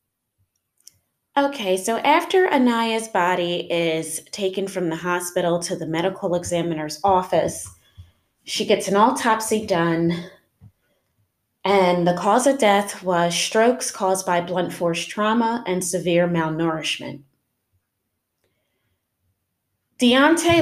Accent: American